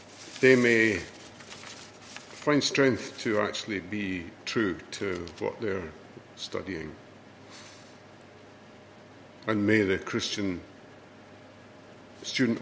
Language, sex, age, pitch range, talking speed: English, male, 60-79, 100-120 Hz, 75 wpm